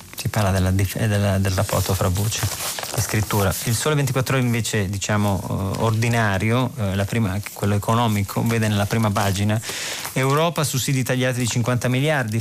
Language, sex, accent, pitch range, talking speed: Italian, male, native, 105-125 Hz, 150 wpm